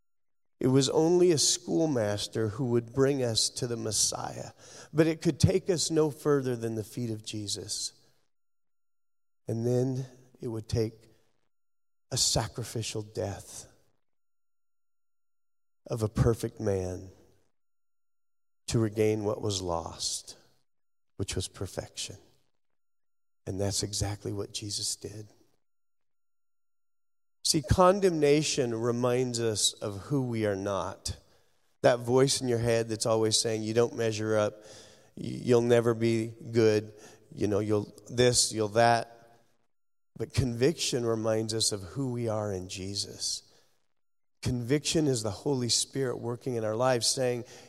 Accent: American